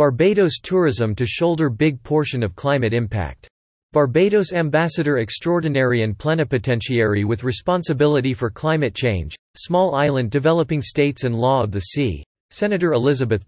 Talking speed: 135 wpm